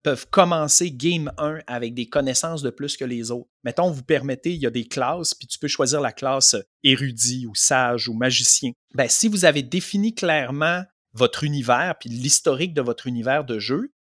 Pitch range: 120-175 Hz